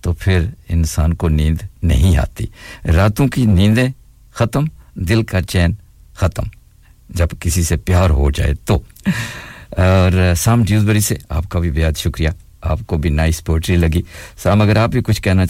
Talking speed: 160 wpm